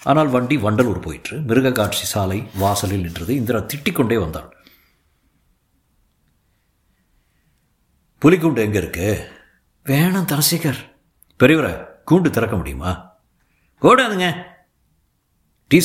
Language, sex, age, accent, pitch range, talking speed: Tamil, male, 50-69, native, 90-140 Hz, 90 wpm